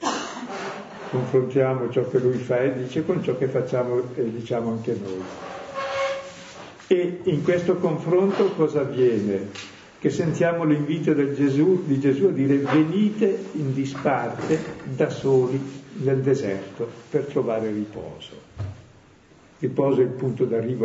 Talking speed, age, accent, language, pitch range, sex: 130 wpm, 50-69, native, Italian, 120-155 Hz, male